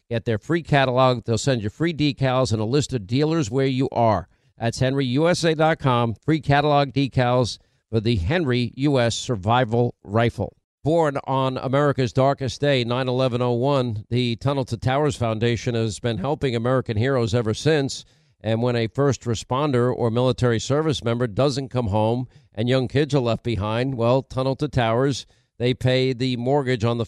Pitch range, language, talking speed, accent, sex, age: 120-135 Hz, English, 170 wpm, American, male, 50-69